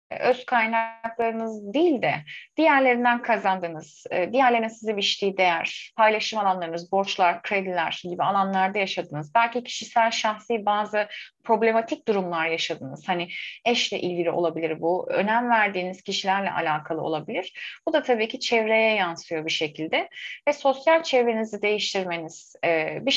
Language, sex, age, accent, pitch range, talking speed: Turkish, female, 30-49, native, 180-245 Hz, 120 wpm